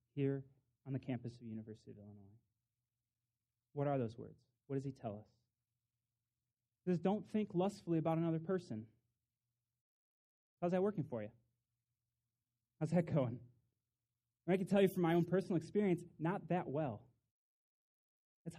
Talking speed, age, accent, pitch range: 150 wpm, 30-49, American, 120-165 Hz